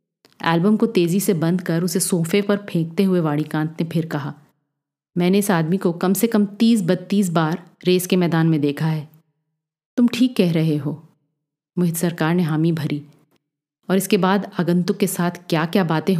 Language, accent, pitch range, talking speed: Hindi, native, 160-200 Hz, 185 wpm